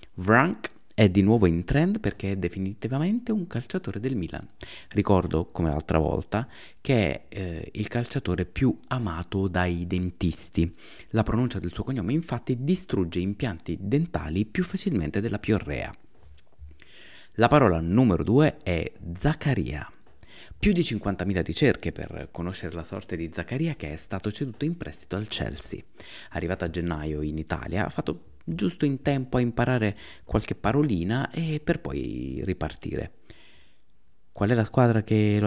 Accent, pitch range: native, 85-130 Hz